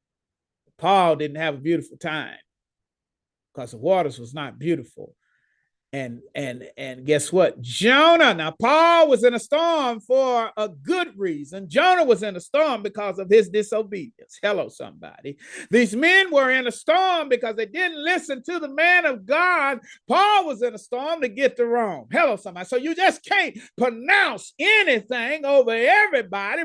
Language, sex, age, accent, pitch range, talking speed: English, male, 40-59, American, 230-345 Hz, 165 wpm